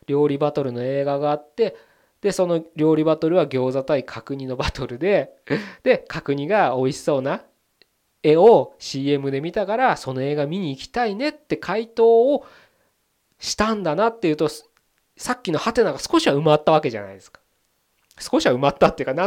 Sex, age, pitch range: male, 20-39, 125-190 Hz